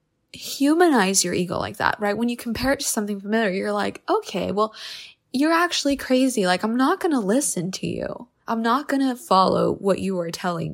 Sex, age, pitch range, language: female, 20-39, 175-225 Hz, English